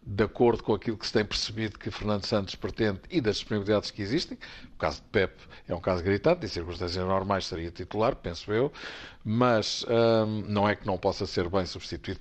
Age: 50-69